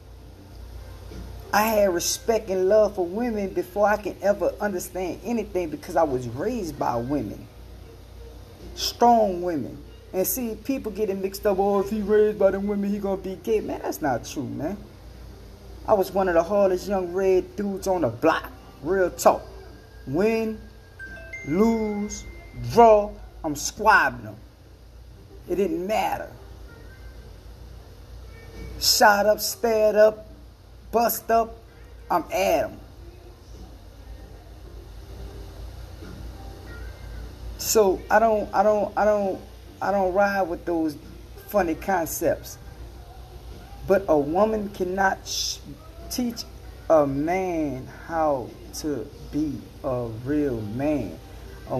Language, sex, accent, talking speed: English, male, American, 120 wpm